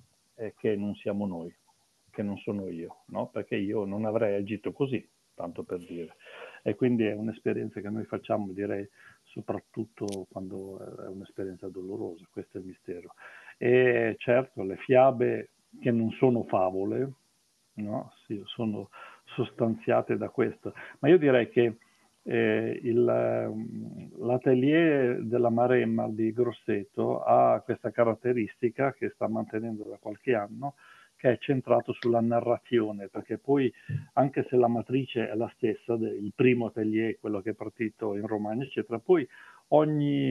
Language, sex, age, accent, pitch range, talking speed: Italian, male, 50-69, native, 105-130 Hz, 140 wpm